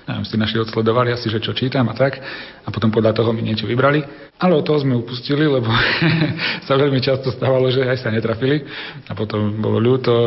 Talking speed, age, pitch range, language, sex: 210 wpm, 40-59, 115-130 Hz, Slovak, male